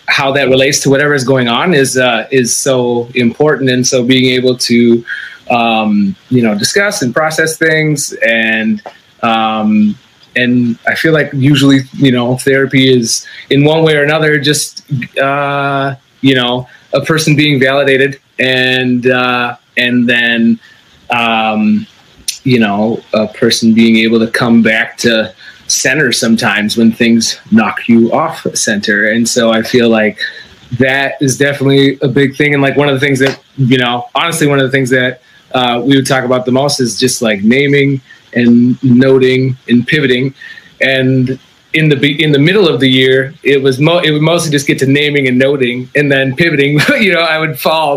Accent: American